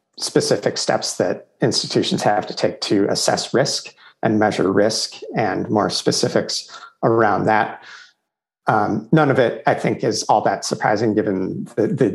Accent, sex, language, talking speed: American, male, English, 155 wpm